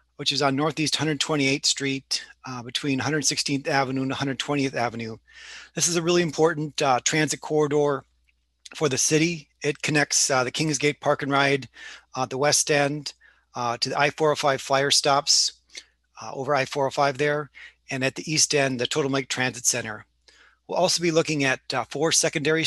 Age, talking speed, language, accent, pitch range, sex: 30-49, 165 wpm, English, American, 135-155 Hz, male